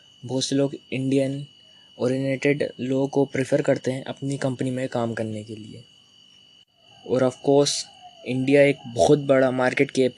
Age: 20-39